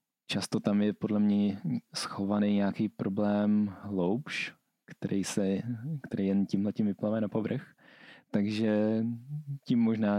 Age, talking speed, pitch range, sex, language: 20-39, 120 wpm, 105-115 Hz, male, Czech